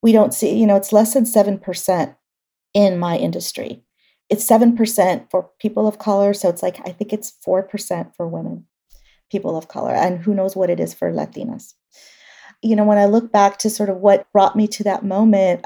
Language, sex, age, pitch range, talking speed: English, female, 40-59, 195-230 Hz, 205 wpm